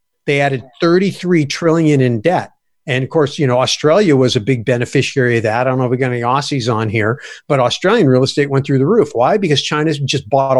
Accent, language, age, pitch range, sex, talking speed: American, English, 50-69, 130-160 Hz, male, 230 wpm